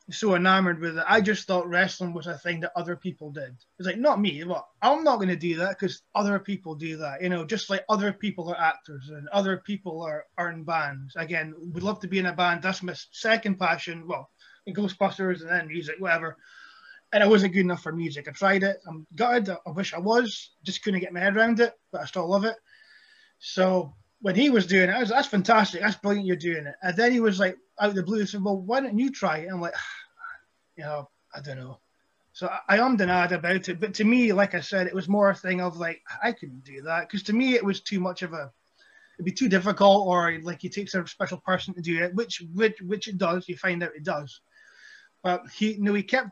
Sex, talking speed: male, 255 wpm